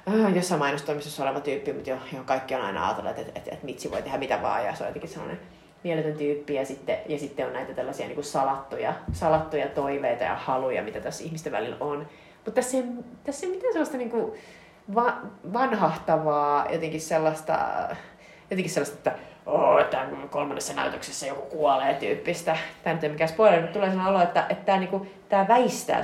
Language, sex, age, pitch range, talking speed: Finnish, female, 30-49, 150-200 Hz, 185 wpm